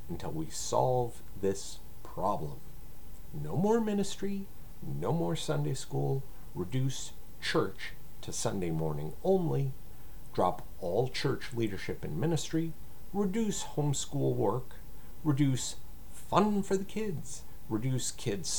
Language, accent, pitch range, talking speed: English, American, 115-165 Hz, 110 wpm